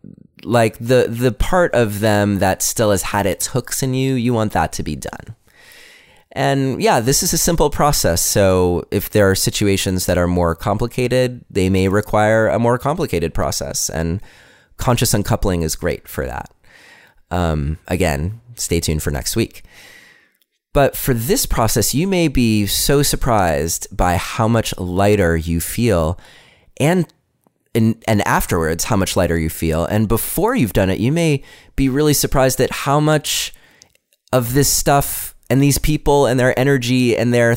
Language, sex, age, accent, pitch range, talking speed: English, male, 30-49, American, 90-125 Hz, 170 wpm